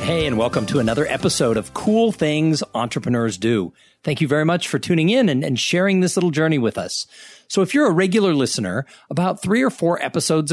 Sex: male